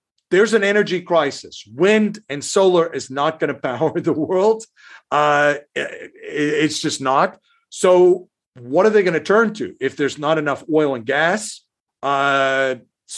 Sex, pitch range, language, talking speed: male, 135-175 Hz, English, 155 wpm